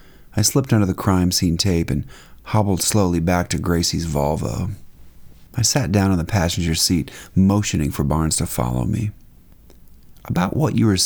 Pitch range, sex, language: 80-110 Hz, male, English